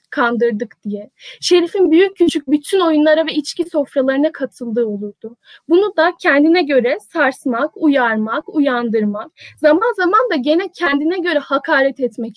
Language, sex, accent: Turkish, female, native